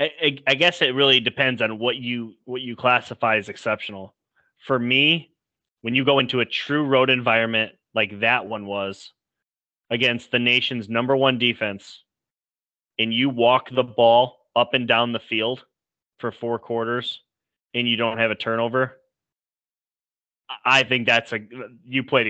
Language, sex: English, male